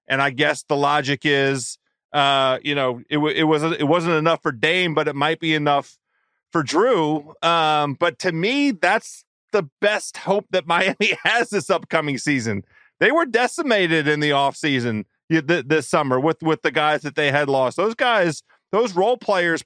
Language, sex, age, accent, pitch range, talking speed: English, male, 40-59, American, 155-210 Hz, 190 wpm